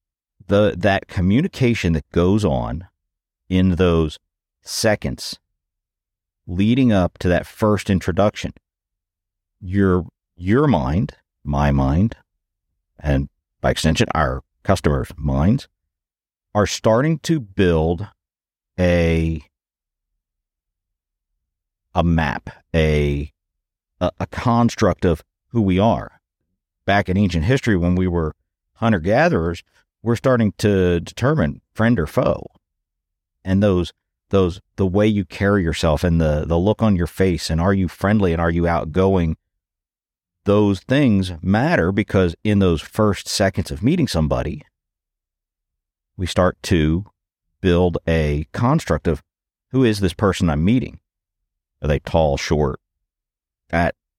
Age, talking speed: 50-69, 120 wpm